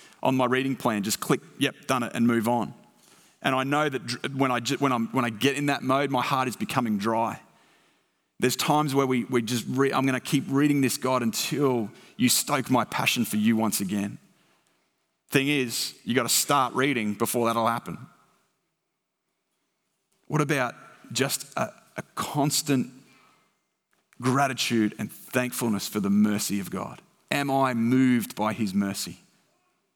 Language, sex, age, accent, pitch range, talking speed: English, male, 30-49, Australian, 110-130 Hz, 165 wpm